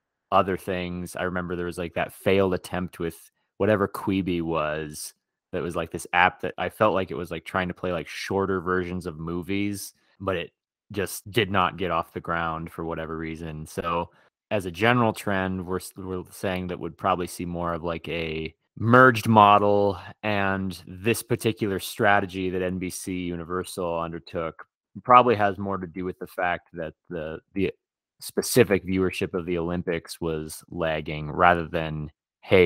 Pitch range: 85-100 Hz